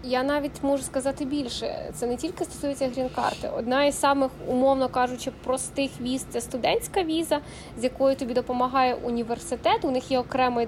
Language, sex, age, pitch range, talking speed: Ukrainian, female, 20-39, 255-290 Hz, 175 wpm